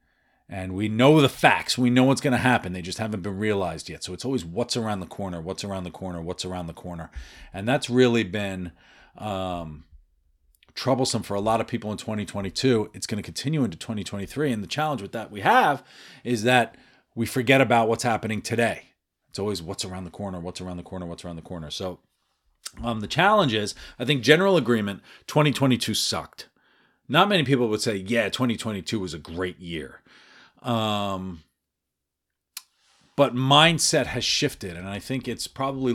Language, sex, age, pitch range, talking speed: English, male, 40-59, 95-125 Hz, 185 wpm